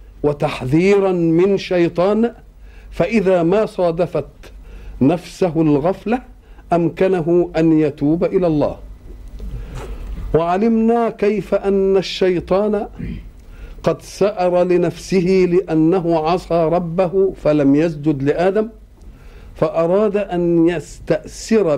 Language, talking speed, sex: Arabic, 80 wpm, male